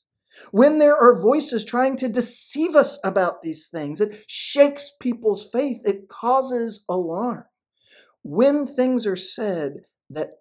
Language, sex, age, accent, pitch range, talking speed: English, male, 50-69, American, 180-245 Hz, 135 wpm